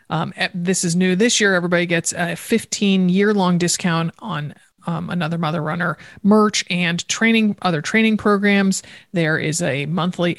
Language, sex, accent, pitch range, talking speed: English, male, American, 165-195 Hz, 160 wpm